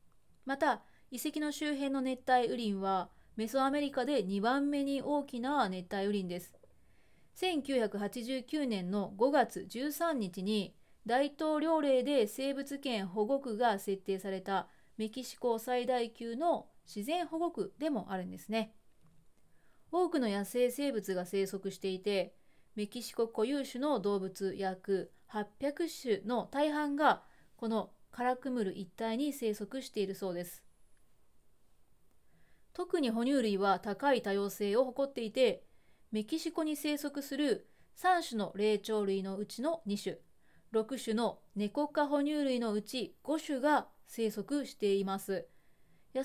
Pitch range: 200-275 Hz